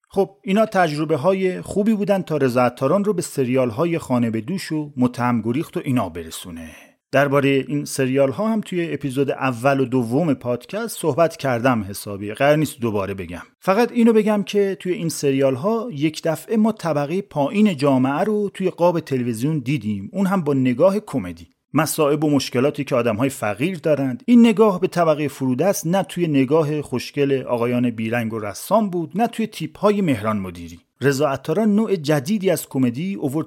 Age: 40-59